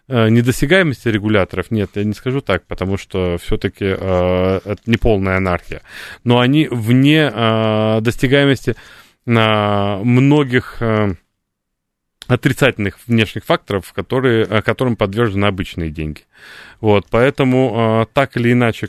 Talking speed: 115 wpm